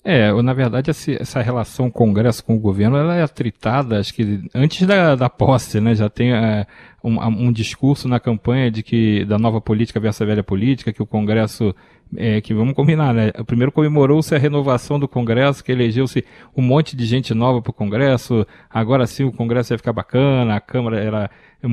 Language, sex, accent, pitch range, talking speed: Portuguese, male, Brazilian, 110-135 Hz, 200 wpm